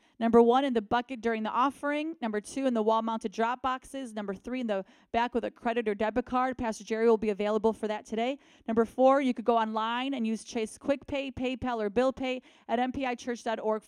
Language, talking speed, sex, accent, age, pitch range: English, 215 wpm, female, American, 30-49, 225-270 Hz